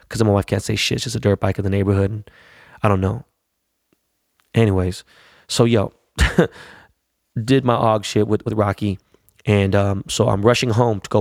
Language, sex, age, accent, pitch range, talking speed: English, male, 20-39, American, 100-115 Hz, 195 wpm